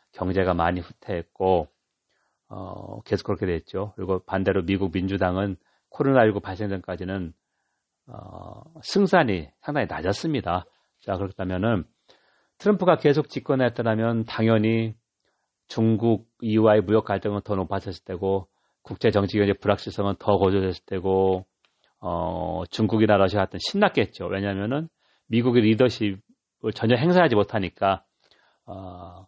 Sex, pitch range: male, 95-115 Hz